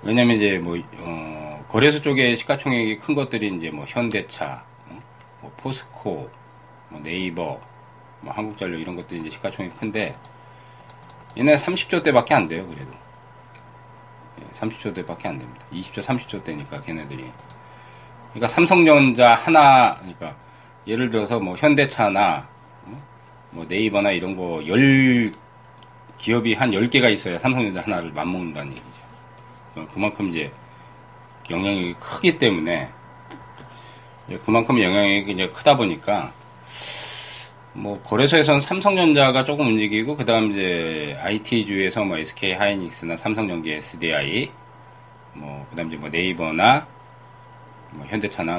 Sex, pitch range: male, 85-125 Hz